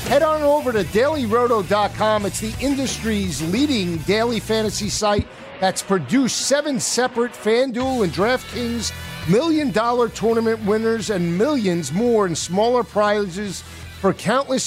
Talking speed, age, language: 125 wpm, 50-69, English